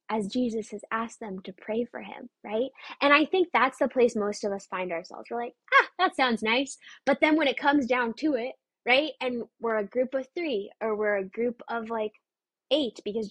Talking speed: 225 wpm